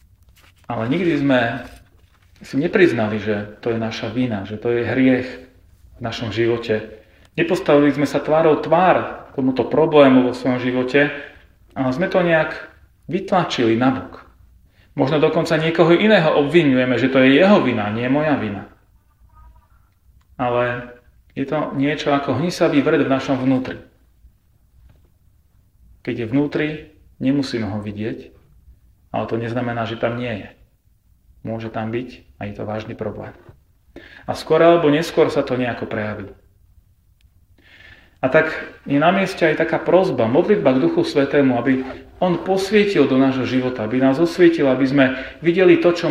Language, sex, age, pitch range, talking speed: Slovak, male, 30-49, 105-140 Hz, 145 wpm